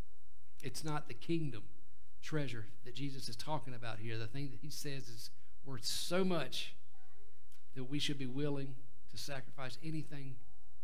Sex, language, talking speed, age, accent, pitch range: male, English, 155 wpm, 50-69, American, 115-150 Hz